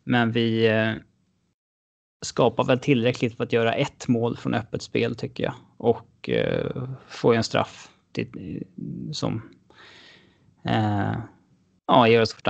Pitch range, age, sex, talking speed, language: 115-135 Hz, 20-39, male, 140 wpm, English